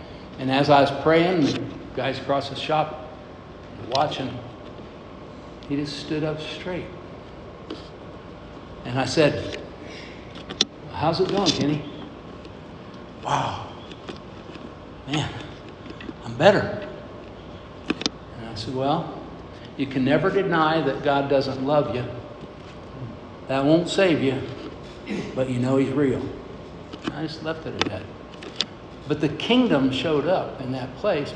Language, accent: English, American